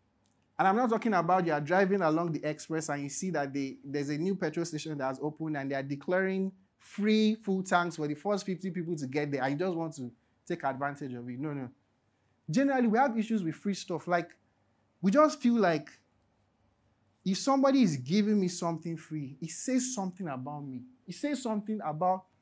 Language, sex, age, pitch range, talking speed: English, male, 30-49, 145-210 Hz, 210 wpm